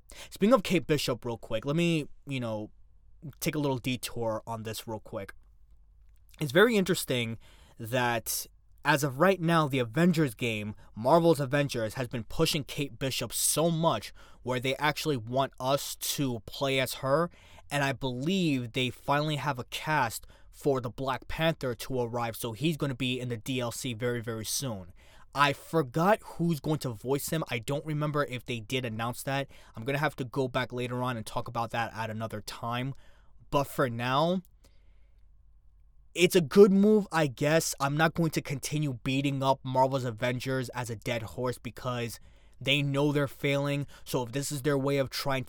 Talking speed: 180 wpm